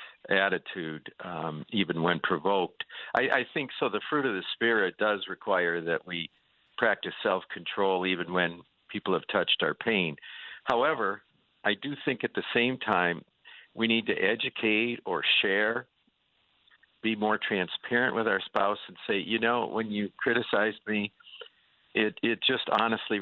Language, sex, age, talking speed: English, male, 50-69, 150 wpm